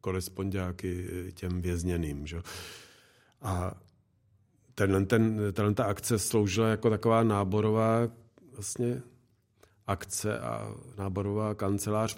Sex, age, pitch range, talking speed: male, 40-59, 95-110 Hz, 95 wpm